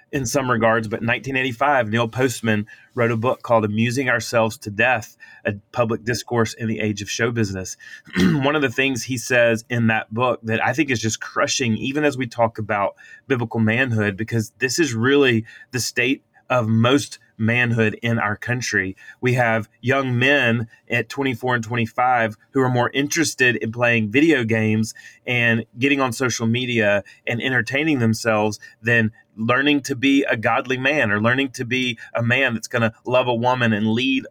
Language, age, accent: English, 30-49, American